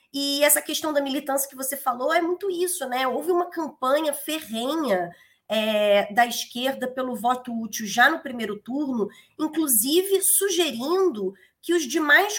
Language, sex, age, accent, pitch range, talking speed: Portuguese, female, 20-39, Brazilian, 245-330 Hz, 150 wpm